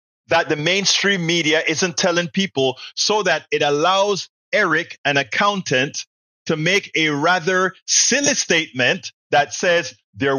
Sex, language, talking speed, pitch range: male, English, 135 wpm, 135-190 Hz